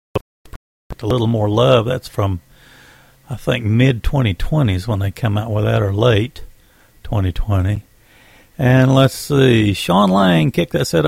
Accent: American